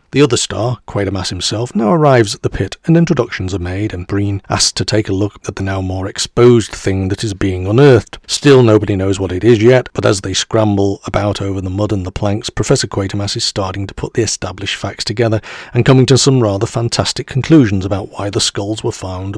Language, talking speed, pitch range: English, 225 wpm, 100-130 Hz